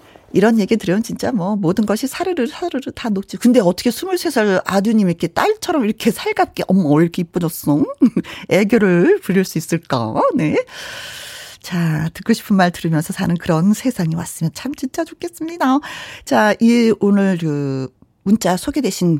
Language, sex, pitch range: Korean, female, 180-285 Hz